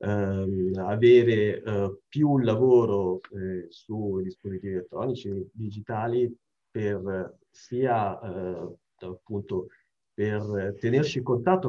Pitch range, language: 100-120 Hz, Italian